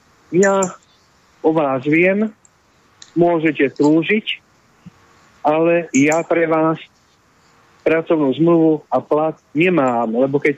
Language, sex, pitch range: Slovak, male, 145-180 Hz